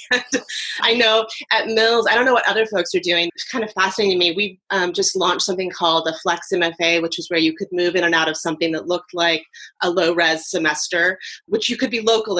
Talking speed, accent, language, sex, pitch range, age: 240 wpm, American, English, female, 165-215 Hz, 30-49